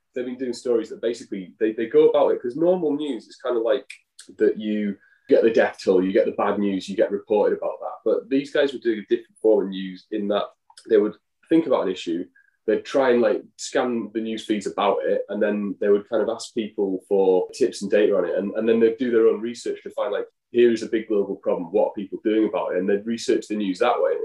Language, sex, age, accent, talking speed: English, male, 20-39, British, 260 wpm